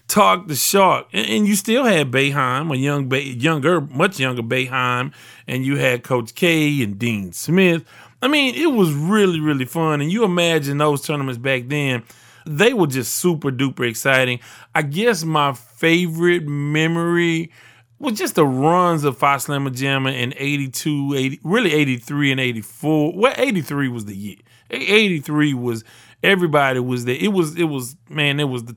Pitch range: 125-165 Hz